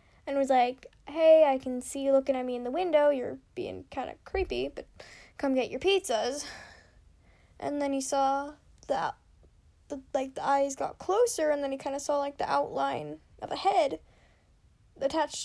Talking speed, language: 185 wpm, English